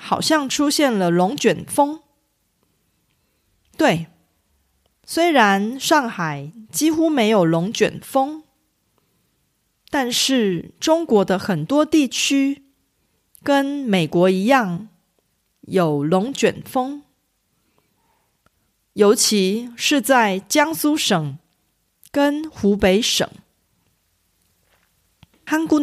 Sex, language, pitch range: female, Korean, 190-275 Hz